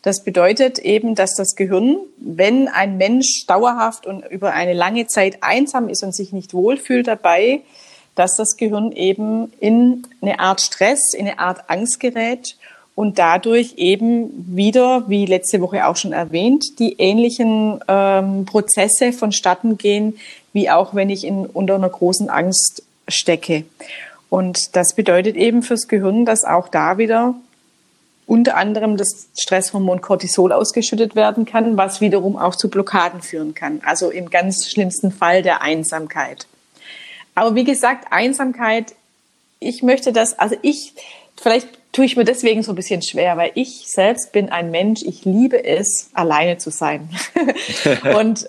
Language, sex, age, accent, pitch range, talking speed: German, female, 30-49, German, 185-230 Hz, 155 wpm